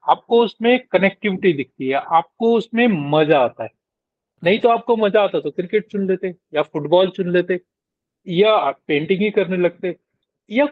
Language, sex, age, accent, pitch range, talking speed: Hindi, male, 40-59, native, 135-185 Hz, 160 wpm